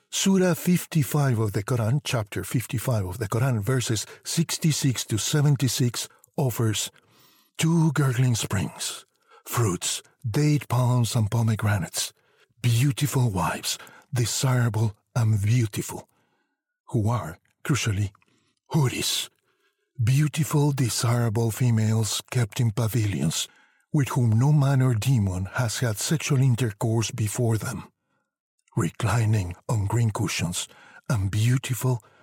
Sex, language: male, English